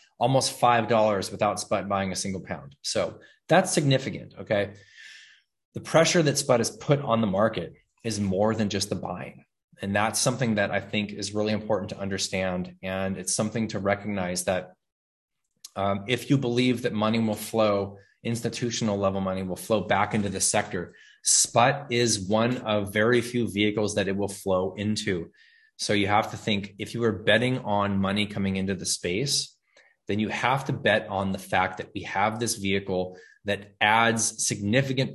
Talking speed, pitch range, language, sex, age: 180 wpm, 95-115 Hz, English, male, 20-39